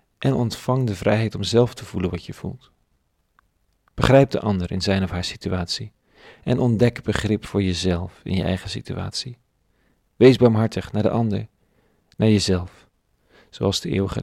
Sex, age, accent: male, 40-59, Dutch